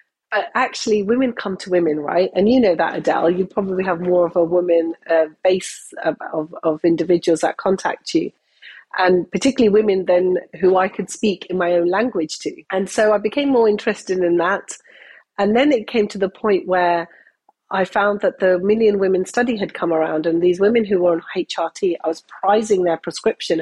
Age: 40-59